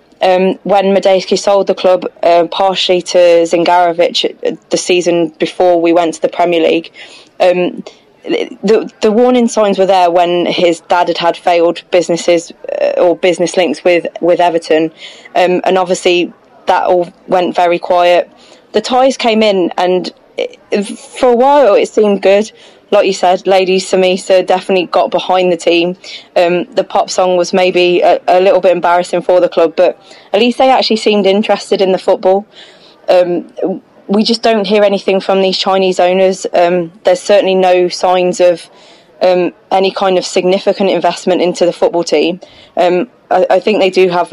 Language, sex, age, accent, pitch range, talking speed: English, female, 20-39, British, 175-200 Hz, 170 wpm